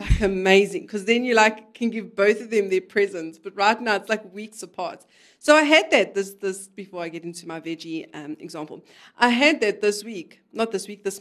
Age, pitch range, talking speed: 40-59, 190-240 Hz, 230 wpm